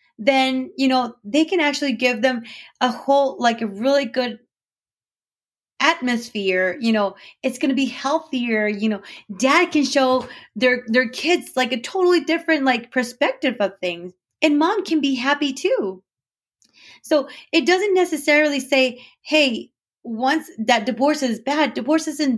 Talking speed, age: 155 wpm, 30-49